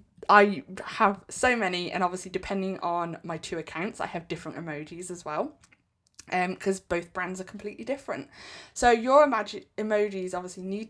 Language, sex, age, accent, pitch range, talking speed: English, female, 20-39, British, 175-220 Hz, 165 wpm